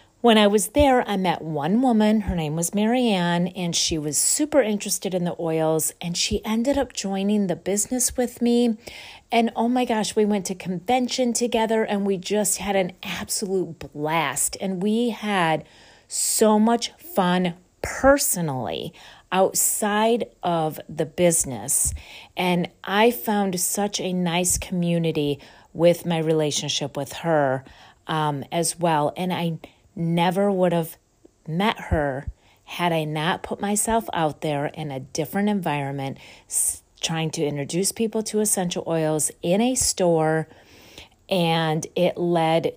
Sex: female